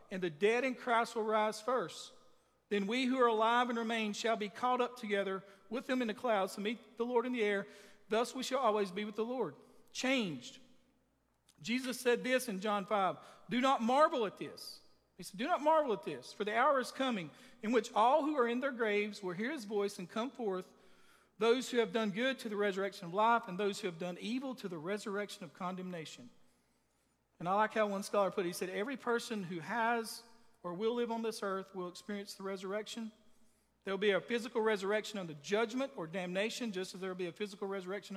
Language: English